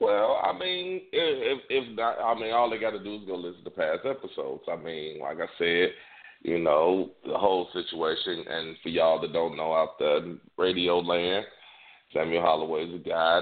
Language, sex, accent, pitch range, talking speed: English, male, American, 85-135 Hz, 190 wpm